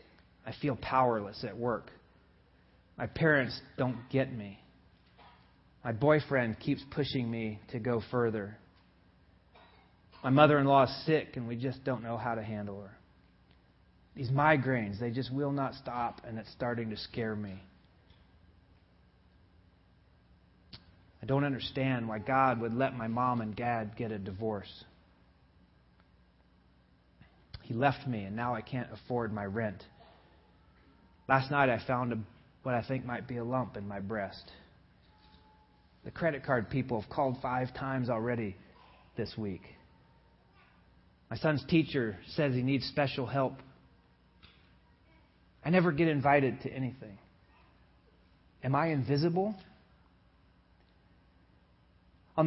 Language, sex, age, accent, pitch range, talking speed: English, male, 30-49, American, 90-130 Hz, 125 wpm